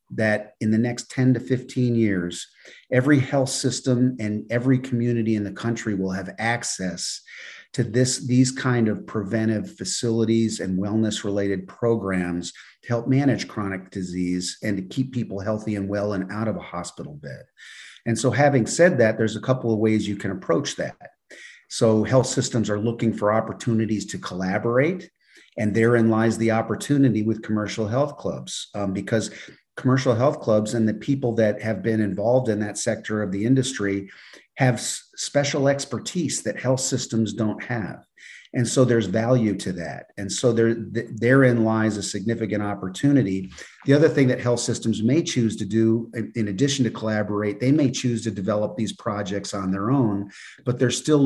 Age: 50-69